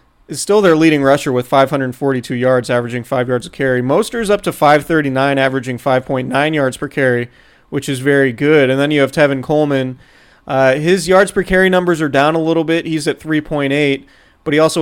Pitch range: 135-155 Hz